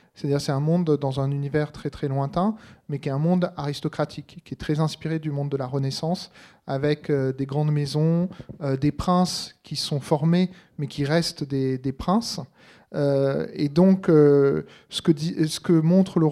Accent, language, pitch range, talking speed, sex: French, French, 150-180 Hz, 175 wpm, male